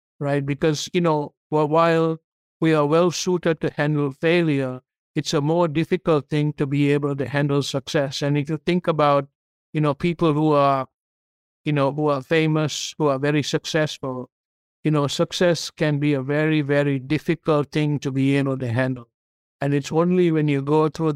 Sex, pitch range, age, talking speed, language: male, 140-155 Hz, 60-79, 180 wpm, English